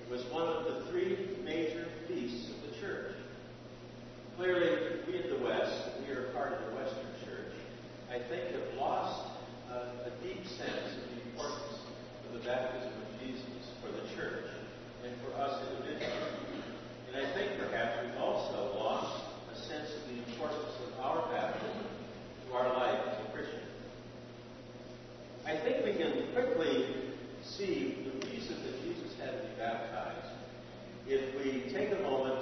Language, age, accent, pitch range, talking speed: English, 50-69, American, 120-155 Hz, 150 wpm